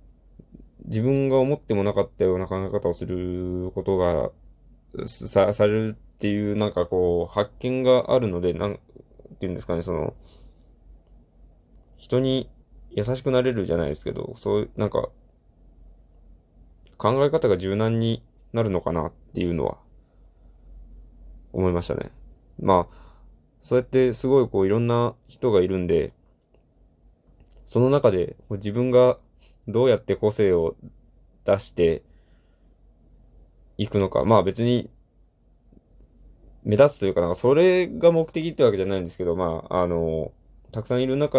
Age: 20-39